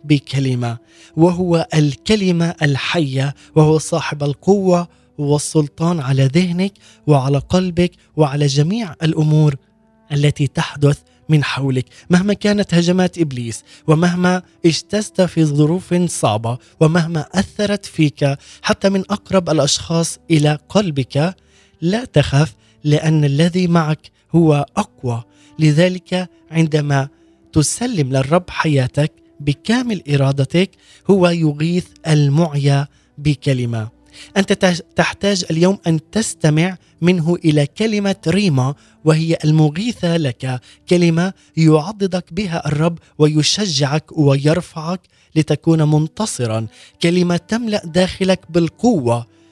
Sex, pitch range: male, 145-180 Hz